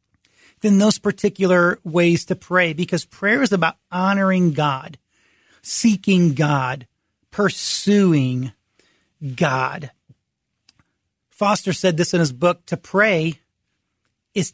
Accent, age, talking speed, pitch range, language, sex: American, 40-59, 105 wpm, 160-205 Hz, English, male